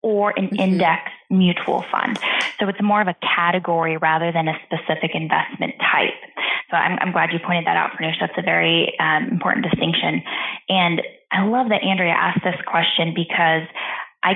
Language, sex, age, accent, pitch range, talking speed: English, female, 20-39, American, 165-200 Hz, 175 wpm